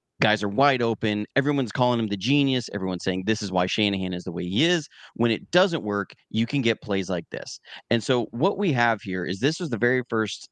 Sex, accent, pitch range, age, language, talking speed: male, American, 100-125 Hz, 30-49, English, 240 wpm